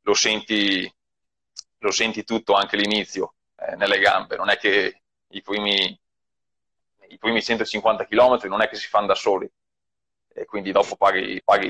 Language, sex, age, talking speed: Italian, male, 20-39, 160 wpm